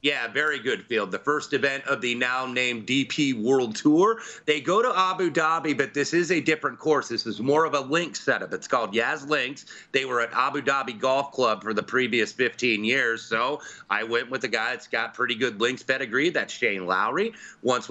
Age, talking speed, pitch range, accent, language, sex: 30-49, 210 wpm, 125-165 Hz, American, English, male